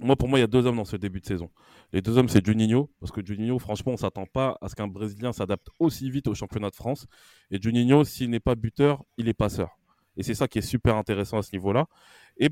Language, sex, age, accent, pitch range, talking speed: French, male, 20-39, French, 105-130 Hz, 275 wpm